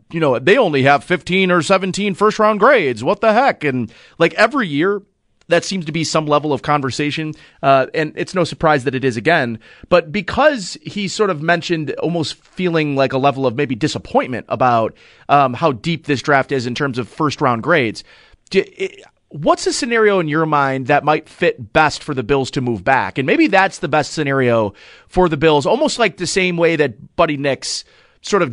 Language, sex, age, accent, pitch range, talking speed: English, male, 30-49, American, 145-185 Hz, 205 wpm